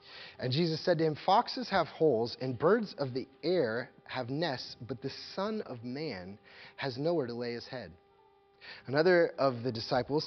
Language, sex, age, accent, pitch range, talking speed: English, male, 30-49, American, 115-145 Hz, 175 wpm